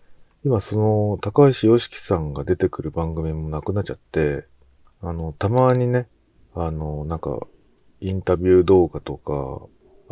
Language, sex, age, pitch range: Japanese, male, 40-59, 75-115 Hz